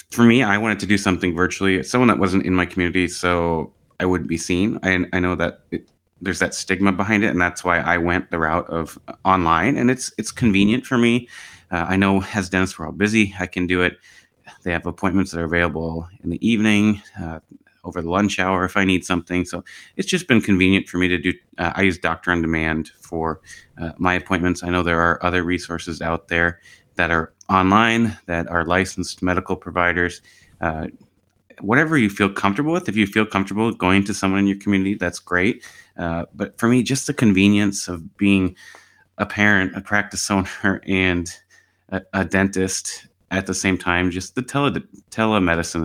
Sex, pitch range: male, 85-100 Hz